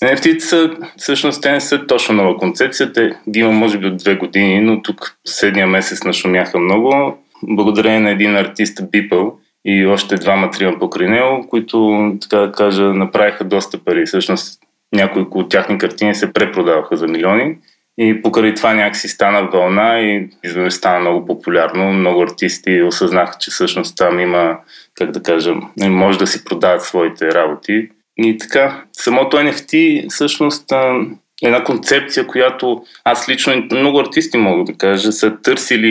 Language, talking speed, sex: Bulgarian, 155 wpm, male